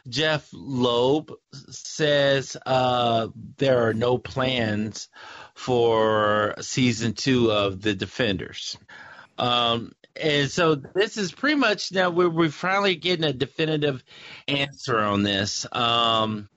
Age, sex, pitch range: 40-59, male, 110-145 Hz